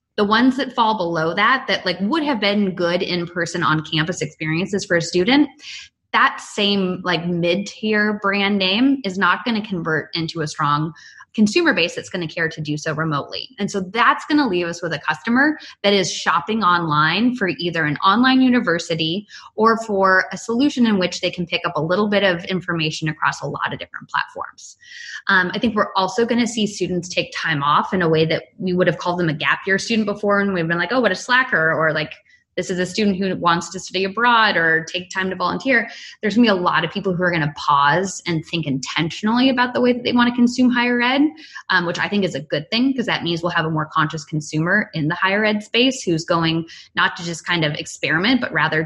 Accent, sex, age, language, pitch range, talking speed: American, female, 20-39, English, 165-215 Hz, 235 wpm